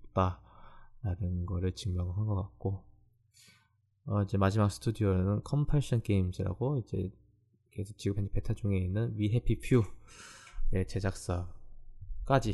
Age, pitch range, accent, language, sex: 20-39, 100-120 Hz, native, Korean, male